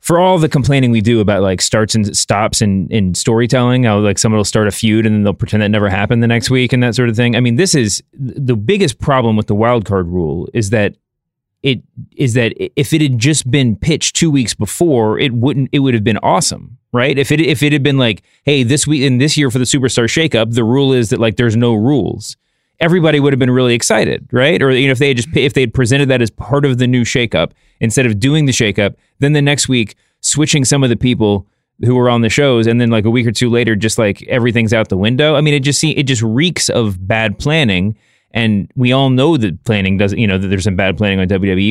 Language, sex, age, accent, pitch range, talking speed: English, male, 30-49, American, 110-140 Hz, 260 wpm